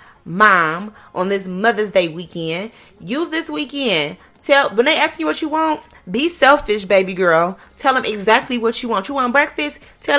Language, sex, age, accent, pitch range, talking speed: English, female, 30-49, American, 185-265 Hz, 185 wpm